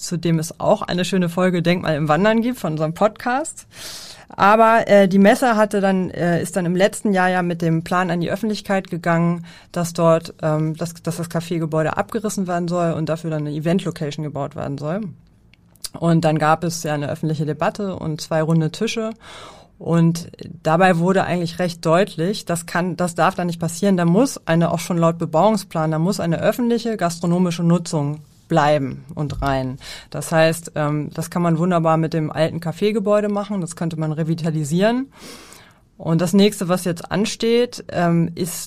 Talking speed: 185 wpm